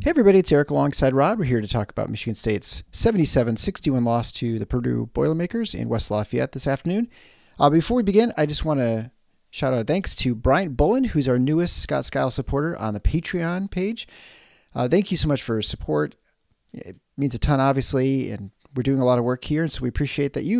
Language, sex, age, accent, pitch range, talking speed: English, male, 40-59, American, 120-170 Hz, 220 wpm